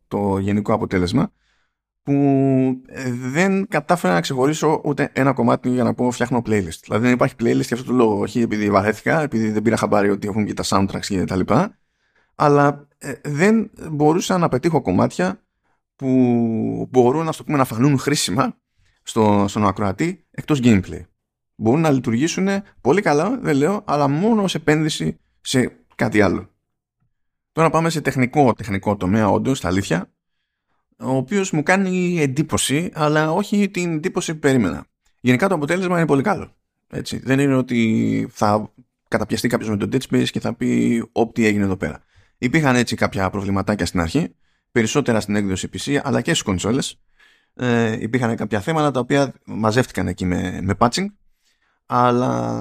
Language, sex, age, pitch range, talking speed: Greek, male, 20-39, 105-150 Hz, 155 wpm